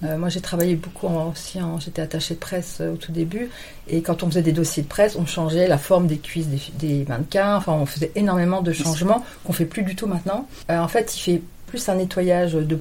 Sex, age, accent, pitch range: female, 40-59, French, 170-205 Hz